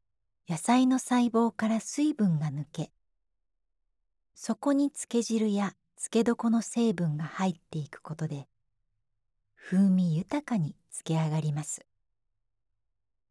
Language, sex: Japanese, female